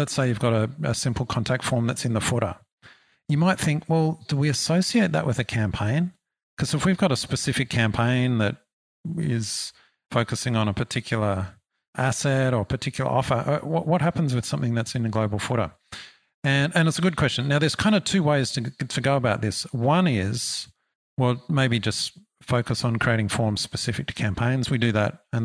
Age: 50-69